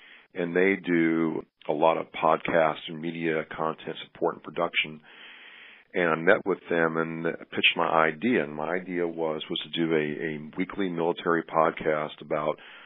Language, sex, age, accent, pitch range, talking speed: English, male, 40-59, American, 80-85 Hz, 165 wpm